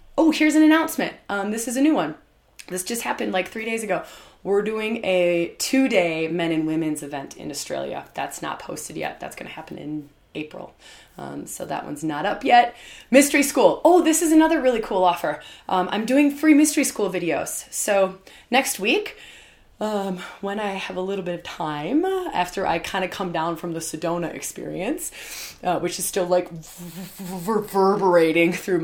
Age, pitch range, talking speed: 20-39, 175-240 Hz, 185 wpm